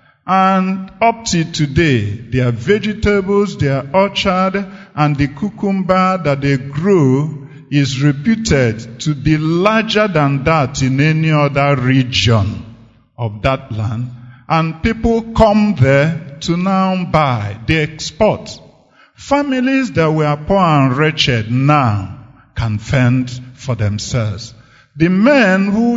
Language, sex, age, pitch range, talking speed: English, male, 50-69, 125-175 Hz, 120 wpm